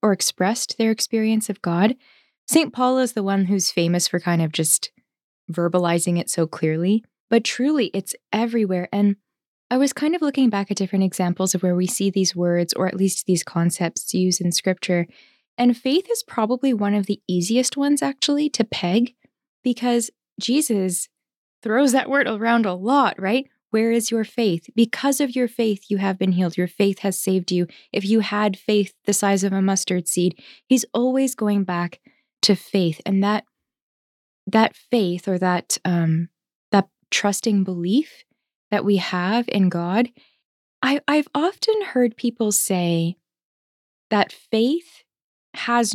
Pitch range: 185-245 Hz